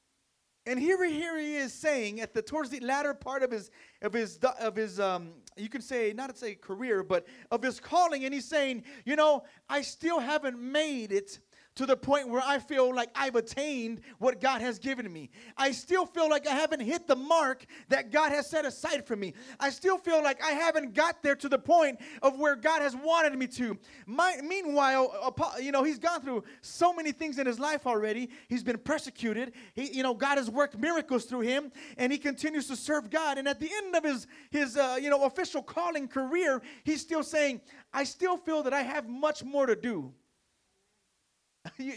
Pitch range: 245-305 Hz